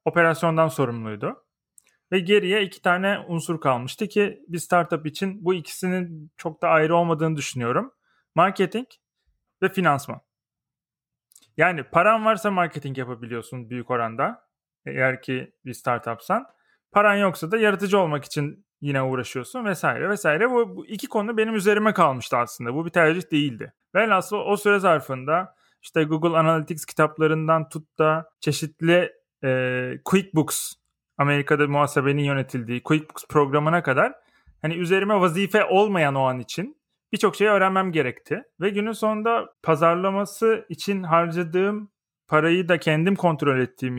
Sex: male